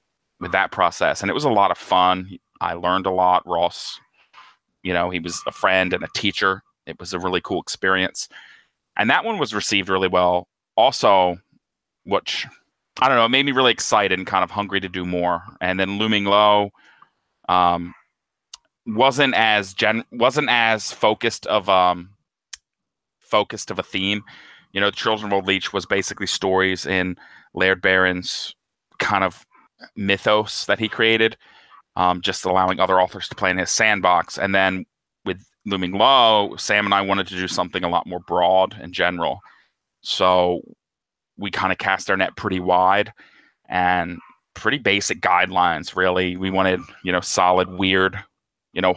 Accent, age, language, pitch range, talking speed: American, 30-49, English, 90-100 Hz, 170 wpm